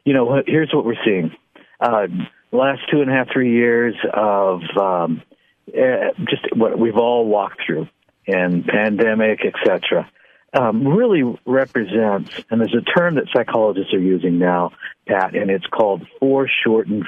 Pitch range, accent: 100-135 Hz, American